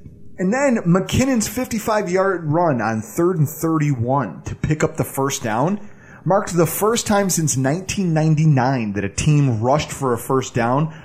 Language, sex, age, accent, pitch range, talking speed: English, male, 30-49, American, 140-210 Hz, 160 wpm